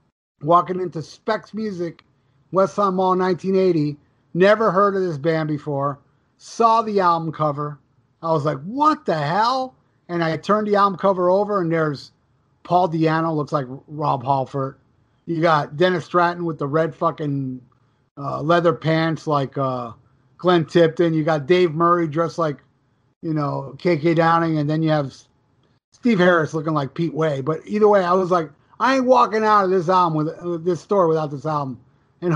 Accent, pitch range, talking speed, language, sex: American, 145-180 Hz, 175 wpm, English, male